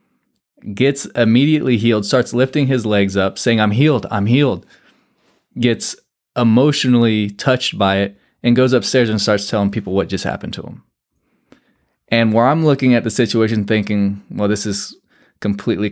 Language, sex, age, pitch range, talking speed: English, male, 20-39, 100-120 Hz, 160 wpm